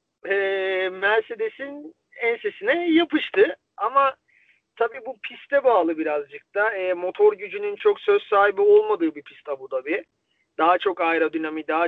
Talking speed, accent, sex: 130 wpm, native, male